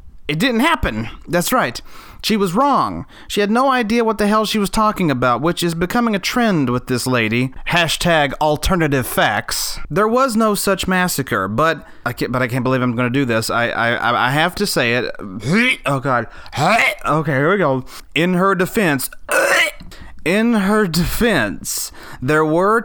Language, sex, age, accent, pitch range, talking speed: English, male, 30-49, American, 130-200 Hz, 175 wpm